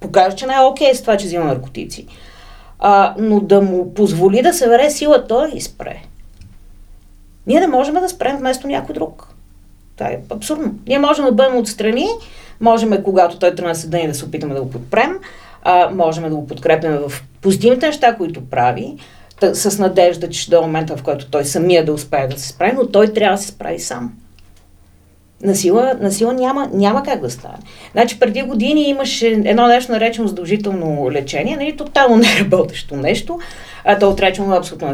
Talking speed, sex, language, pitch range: 195 wpm, female, Bulgarian, 160-255 Hz